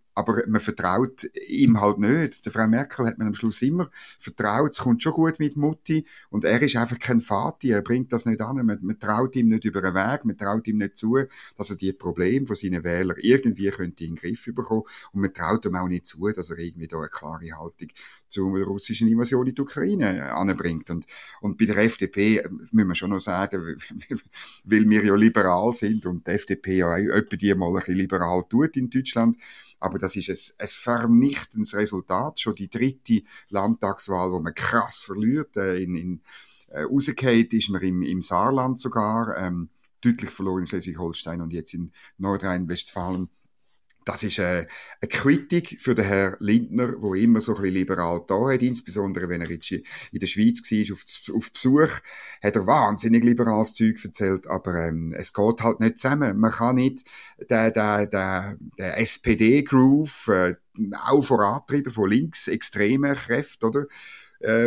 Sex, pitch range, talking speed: male, 95-120 Hz, 180 wpm